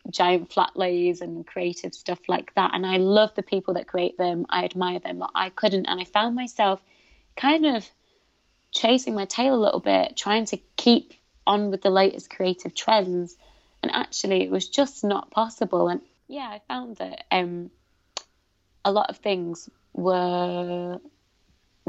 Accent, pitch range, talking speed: British, 175-215 Hz, 165 wpm